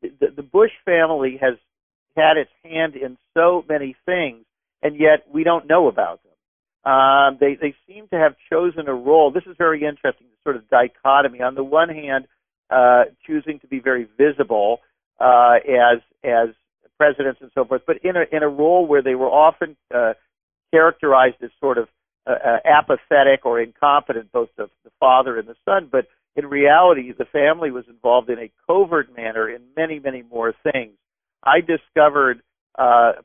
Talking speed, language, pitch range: 175 wpm, English, 125-160 Hz